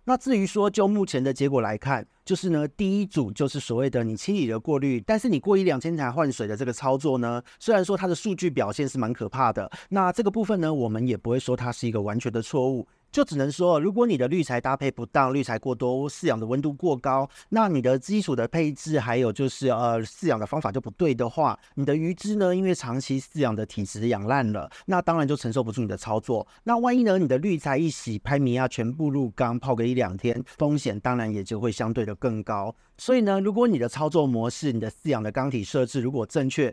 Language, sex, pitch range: Chinese, male, 120-170 Hz